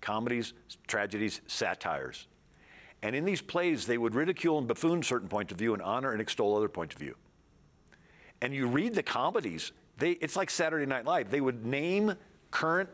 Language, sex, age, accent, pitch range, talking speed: English, male, 50-69, American, 115-165 Hz, 180 wpm